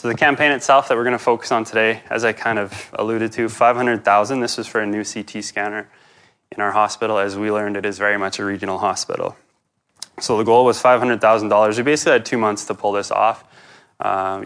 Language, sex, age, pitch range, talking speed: English, male, 20-39, 105-115 Hz, 220 wpm